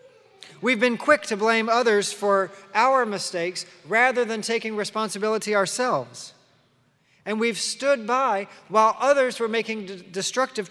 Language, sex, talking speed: English, male, 130 wpm